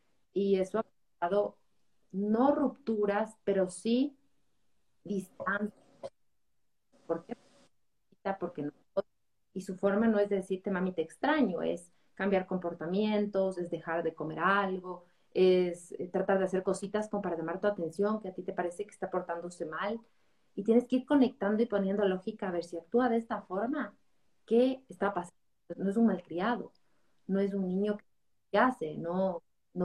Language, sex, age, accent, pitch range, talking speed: Spanish, female, 30-49, Mexican, 180-225 Hz, 160 wpm